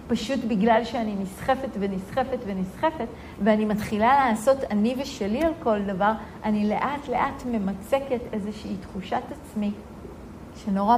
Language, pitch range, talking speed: Hebrew, 205-250 Hz, 115 wpm